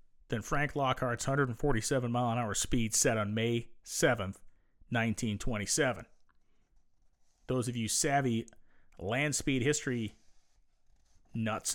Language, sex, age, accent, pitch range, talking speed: English, male, 40-59, American, 105-135 Hz, 90 wpm